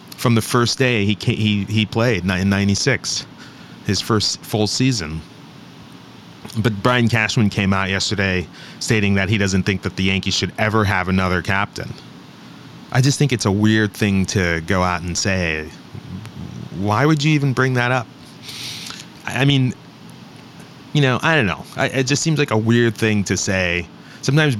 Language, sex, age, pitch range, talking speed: English, male, 30-49, 95-125 Hz, 175 wpm